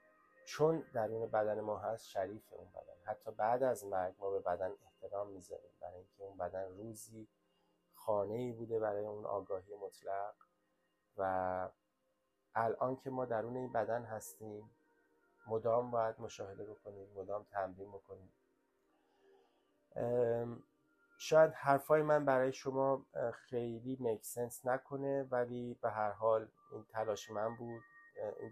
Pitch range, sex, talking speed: 105-135 Hz, male, 130 wpm